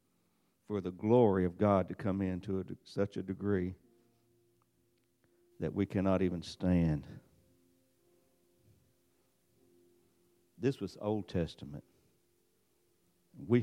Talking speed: 95 wpm